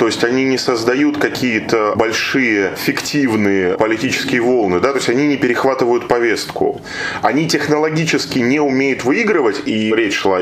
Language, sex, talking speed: Russian, male, 145 wpm